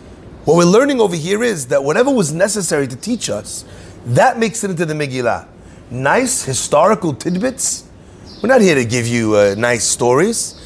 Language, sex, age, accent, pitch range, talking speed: English, male, 30-49, American, 125-200 Hz, 175 wpm